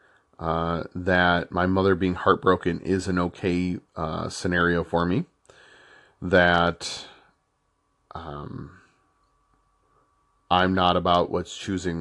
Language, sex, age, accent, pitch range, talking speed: English, male, 40-59, American, 85-105 Hz, 100 wpm